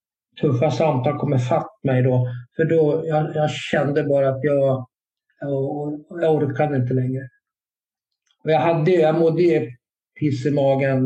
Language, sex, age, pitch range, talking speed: Swedish, male, 50-69, 130-150 Hz, 150 wpm